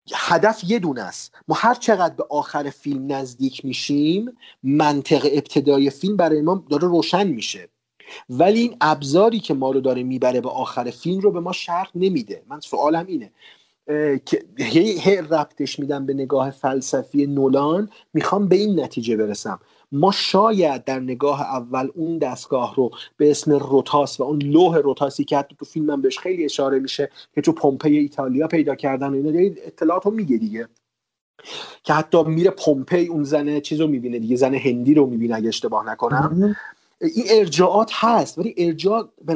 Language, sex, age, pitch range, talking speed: Persian, male, 40-59, 135-170 Hz, 160 wpm